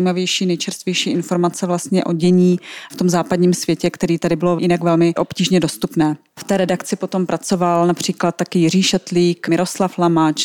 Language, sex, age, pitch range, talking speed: Czech, female, 20-39, 170-190 Hz, 155 wpm